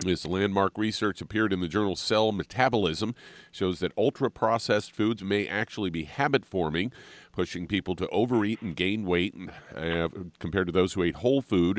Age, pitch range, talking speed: 50-69, 85-105 Hz, 165 wpm